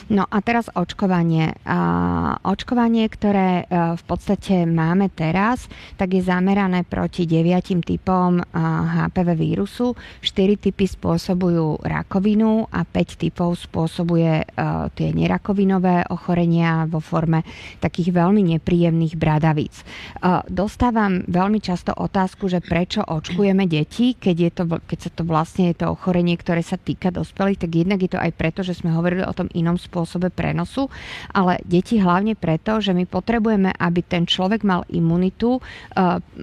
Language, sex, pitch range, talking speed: Slovak, female, 165-195 Hz, 140 wpm